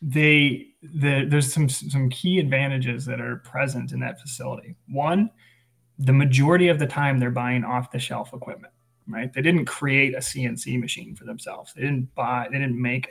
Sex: male